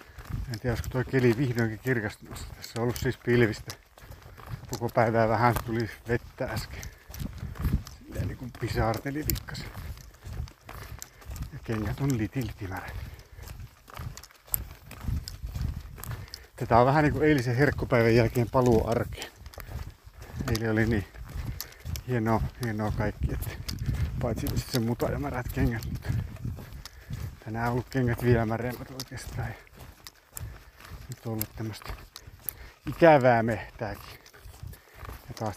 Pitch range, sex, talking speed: 110-130 Hz, male, 105 wpm